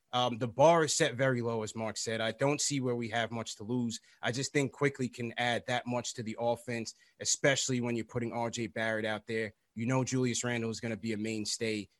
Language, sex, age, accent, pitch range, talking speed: English, male, 30-49, American, 115-130 Hz, 240 wpm